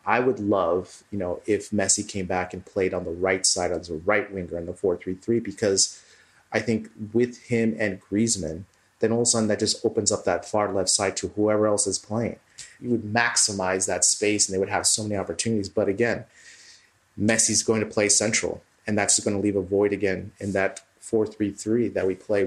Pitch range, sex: 95-110 Hz, male